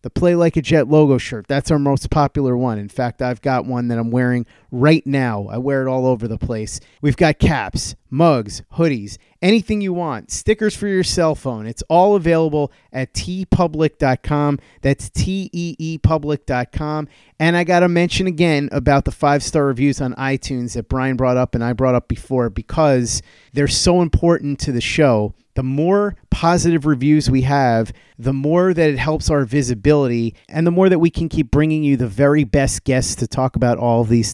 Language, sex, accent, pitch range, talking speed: English, male, American, 125-160 Hz, 190 wpm